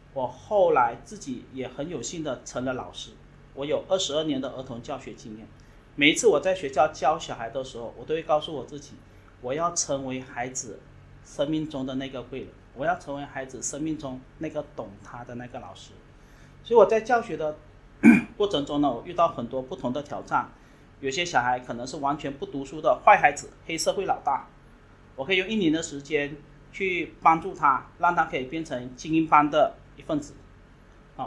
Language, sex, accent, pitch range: English, male, Chinese, 135-185 Hz